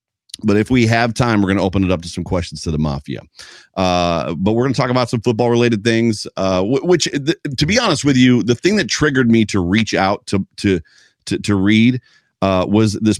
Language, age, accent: English, 40-59, American